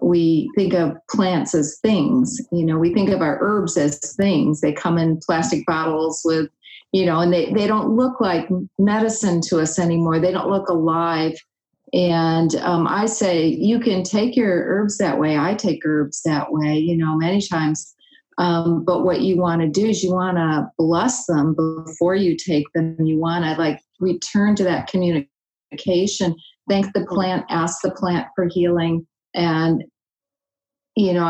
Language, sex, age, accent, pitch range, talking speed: English, female, 40-59, American, 165-195 Hz, 180 wpm